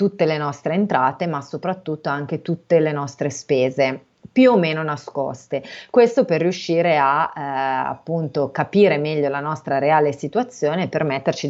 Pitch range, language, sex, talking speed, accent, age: 145-170 Hz, Italian, female, 145 wpm, native, 30-49